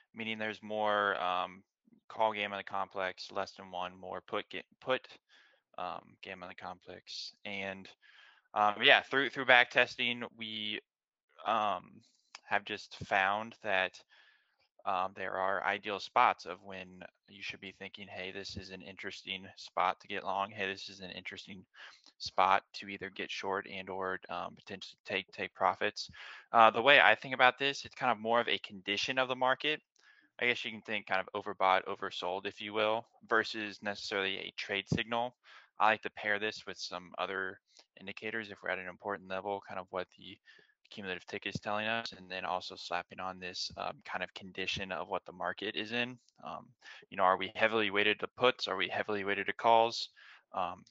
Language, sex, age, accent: English, male, 10-29, American